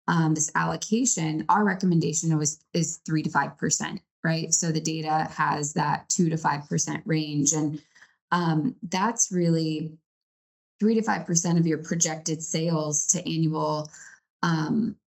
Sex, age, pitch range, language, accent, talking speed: female, 20-39, 160-185 Hz, English, American, 145 wpm